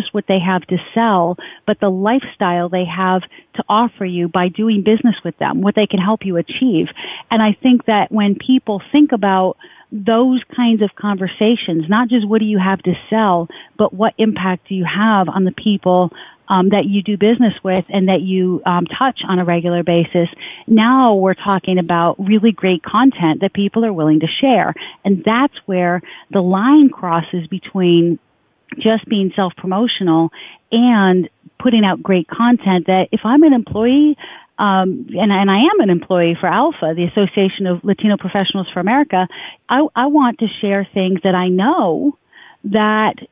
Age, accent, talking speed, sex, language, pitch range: 40-59, American, 175 wpm, female, English, 185-230 Hz